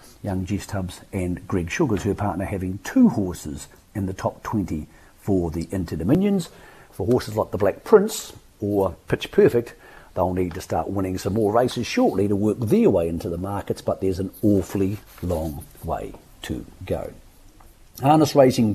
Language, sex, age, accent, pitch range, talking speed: English, male, 50-69, British, 95-120 Hz, 170 wpm